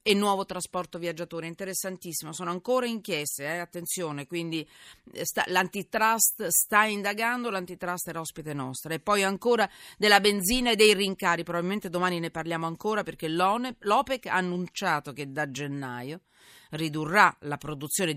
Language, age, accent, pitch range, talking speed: Italian, 40-59, native, 150-205 Hz, 140 wpm